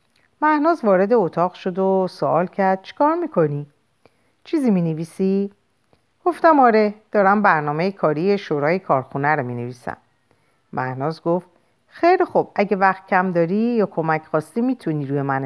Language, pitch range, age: Persian, 145-235 Hz, 50-69